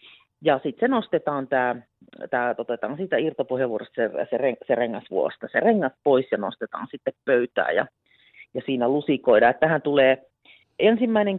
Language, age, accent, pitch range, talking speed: Finnish, 40-59, native, 130-220 Hz, 140 wpm